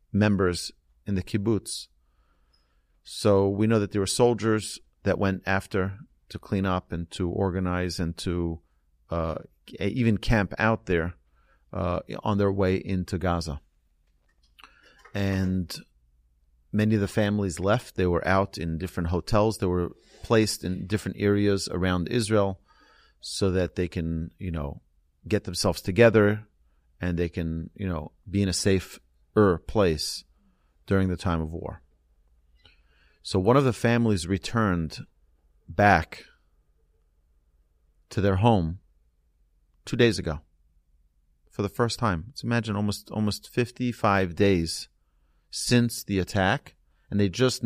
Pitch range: 75-105 Hz